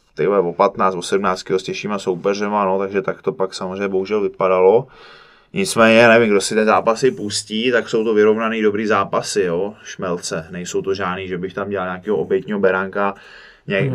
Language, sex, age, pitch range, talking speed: Czech, male, 20-39, 95-110 Hz, 185 wpm